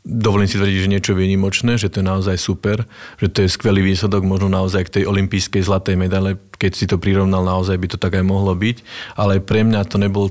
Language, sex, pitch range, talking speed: Slovak, male, 95-110 Hz, 235 wpm